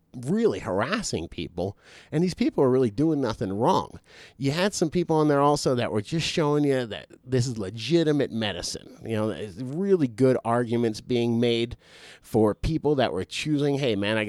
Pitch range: 110-145 Hz